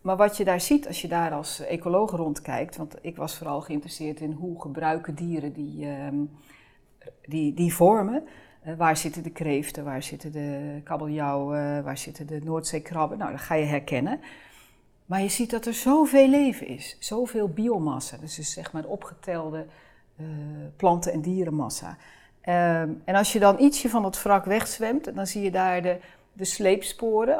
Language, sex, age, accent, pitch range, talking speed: Dutch, female, 40-59, Dutch, 150-200 Hz, 175 wpm